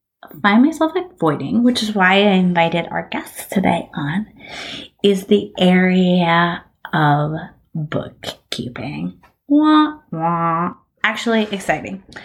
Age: 30-49